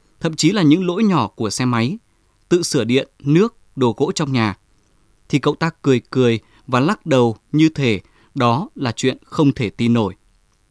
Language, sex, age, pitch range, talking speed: Vietnamese, male, 20-39, 115-160 Hz, 190 wpm